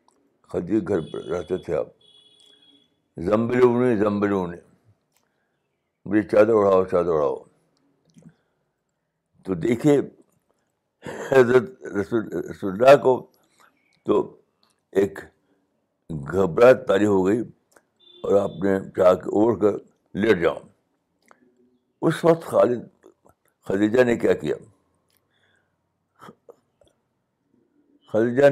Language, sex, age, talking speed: Urdu, male, 60-79, 85 wpm